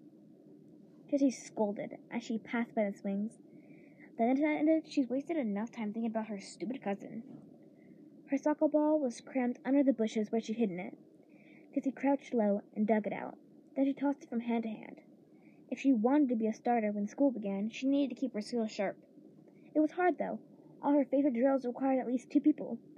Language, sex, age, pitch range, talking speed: English, female, 20-39, 220-290 Hz, 205 wpm